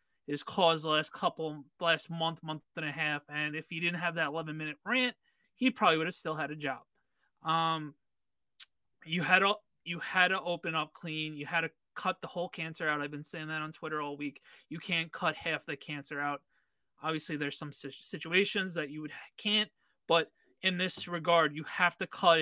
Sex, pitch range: male, 155-185 Hz